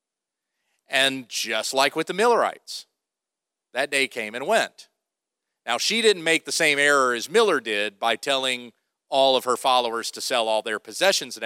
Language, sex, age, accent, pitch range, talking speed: English, male, 40-59, American, 125-185 Hz, 175 wpm